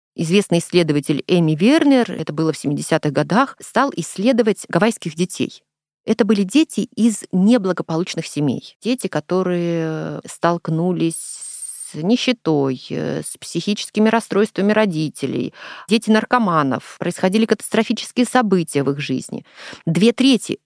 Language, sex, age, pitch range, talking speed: Russian, female, 30-49, 160-230 Hz, 110 wpm